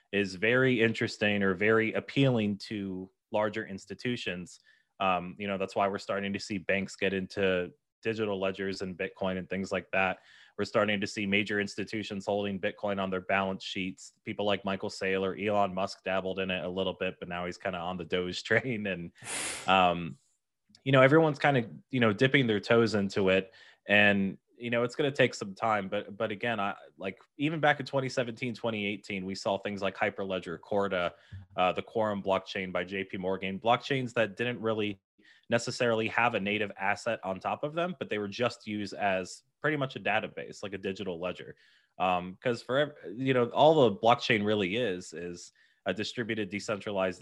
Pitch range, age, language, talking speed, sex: 95-115 Hz, 20-39, English, 190 wpm, male